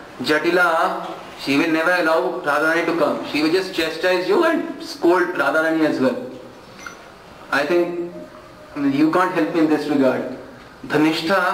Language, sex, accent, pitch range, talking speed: Hindi, male, native, 170-210 Hz, 145 wpm